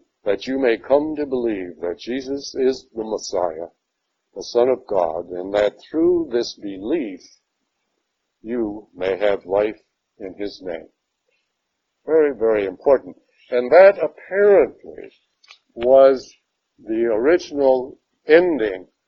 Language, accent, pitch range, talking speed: English, American, 110-155 Hz, 115 wpm